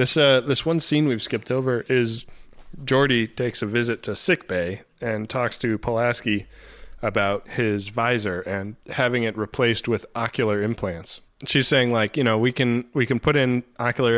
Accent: American